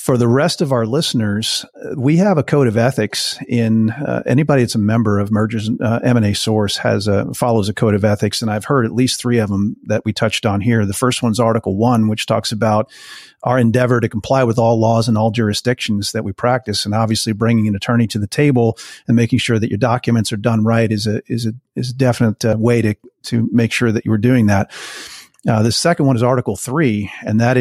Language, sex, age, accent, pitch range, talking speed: English, male, 40-59, American, 110-125 Hz, 235 wpm